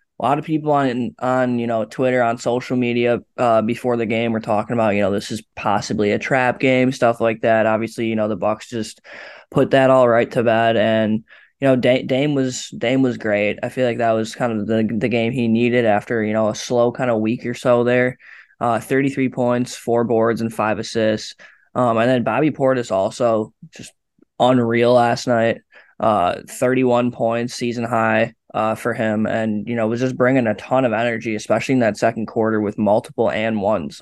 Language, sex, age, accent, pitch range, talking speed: English, male, 20-39, American, 110-125 Hz, 210 wpm